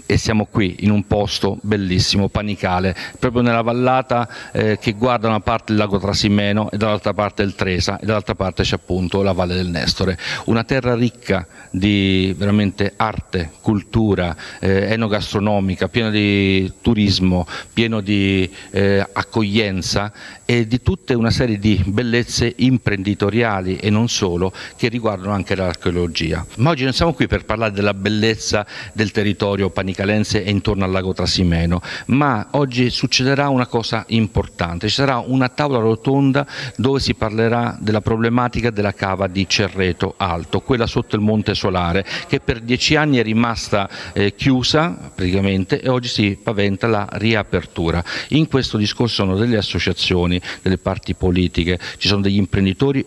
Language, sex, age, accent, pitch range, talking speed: Italian, male, 50-69, native, 95-120 Hz, 155 wpm